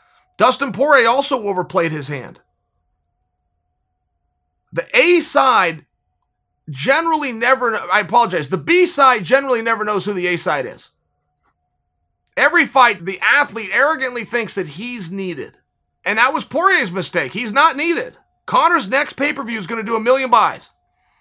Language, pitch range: English, 215-285 Hz